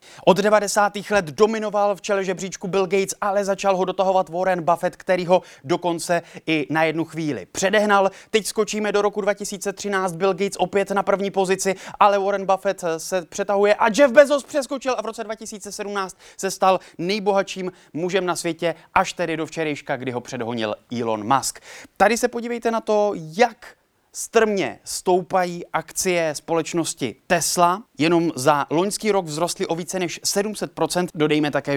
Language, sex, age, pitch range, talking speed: Czech, male, 20-39, 145-195 Hz, 160 wpm